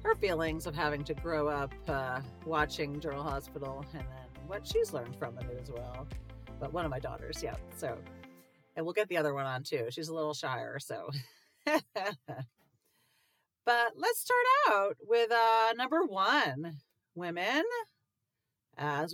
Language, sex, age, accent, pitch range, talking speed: English, female, 40-59, American, 140-185 Hz, 155 wpm